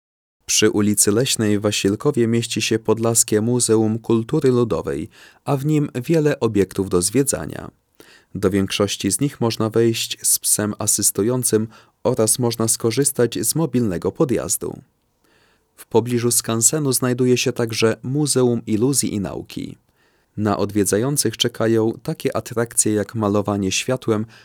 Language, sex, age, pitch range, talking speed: Polish, male, 30-49, 105-125 Hz, 125 wpm